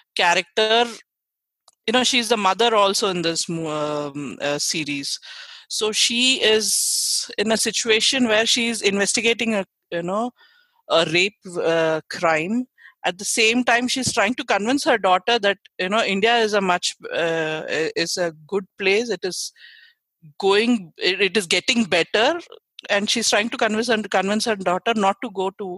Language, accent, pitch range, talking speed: English, Indian, 180-245 Hz, 160 wpm